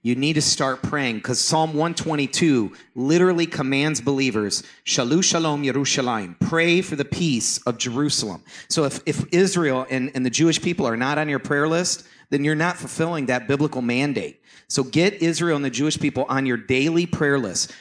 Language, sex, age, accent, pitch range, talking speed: English, male, 40-59, American, 130-165 Hz, 180 wpm